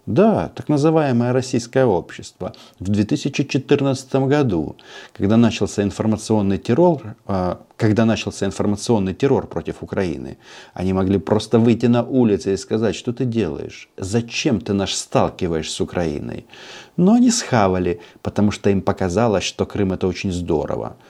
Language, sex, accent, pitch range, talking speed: Russian, male, native, 90-115 Hz, 135 wpm